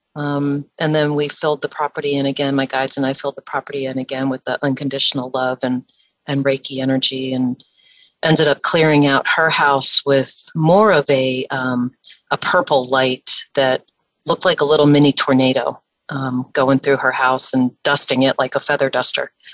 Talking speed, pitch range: 185 wpm, 135-150 Hz